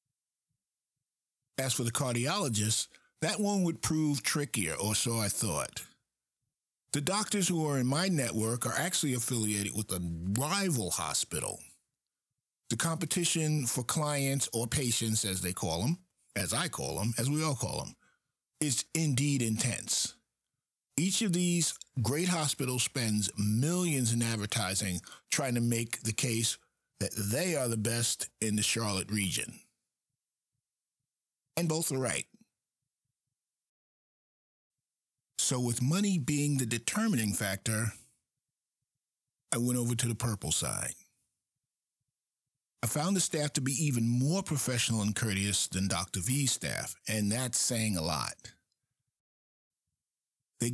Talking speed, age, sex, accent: 130 wpm, 50-69, male, American